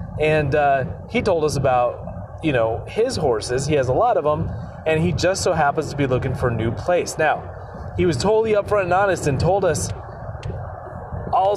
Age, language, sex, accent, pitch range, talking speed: 30-49, English, male, American, 125-165 Hz, 200 wpm